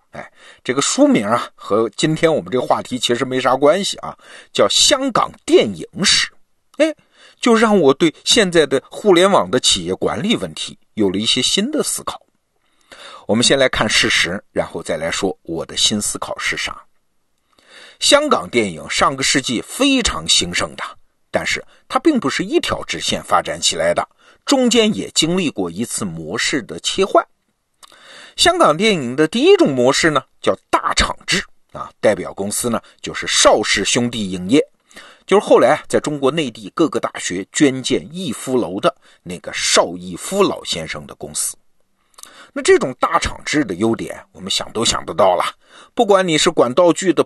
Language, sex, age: Chinese, male, 50-69